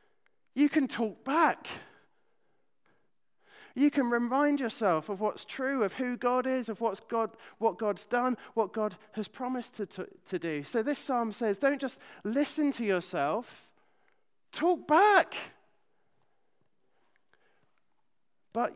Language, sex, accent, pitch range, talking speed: English, male, British, 210-255 Hz, 120 wpm